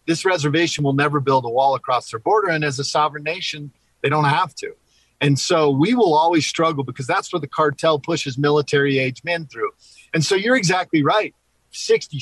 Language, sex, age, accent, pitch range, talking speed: English, male, 40-59, American, 150-180 Hz, 195 wpm